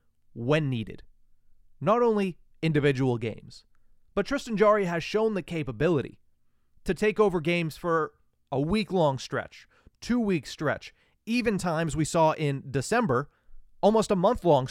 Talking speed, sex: 130 wpm, male